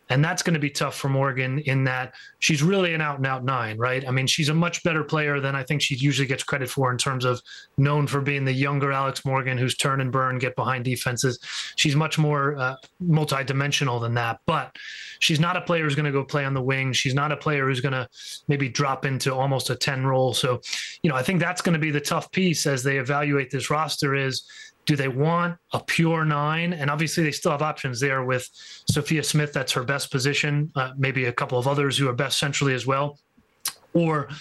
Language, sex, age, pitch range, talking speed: English, male, 30-49, 130-150 Hz, 235 wpm